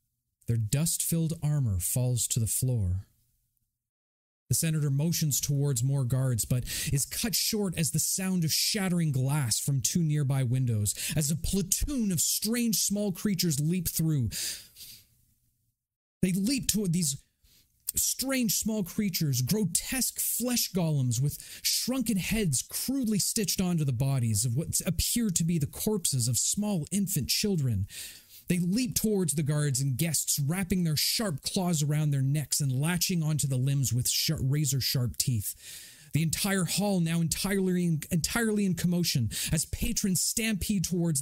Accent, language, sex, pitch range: American, English, male, 115-175 Hz